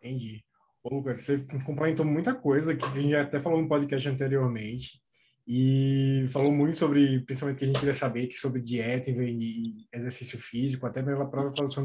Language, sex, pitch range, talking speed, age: Portuguese, male, 135-185 Hz, 170 wpm, 20-39